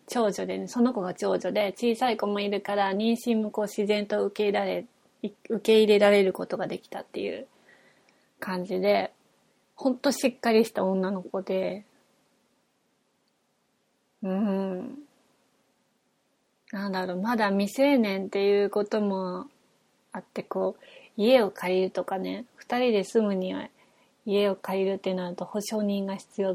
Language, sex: Japanese, female